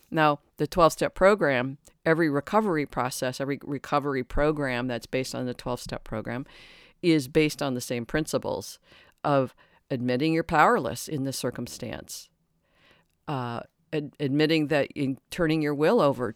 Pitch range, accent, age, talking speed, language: 130-160 Hz, American, 50-69, 140 wpm, English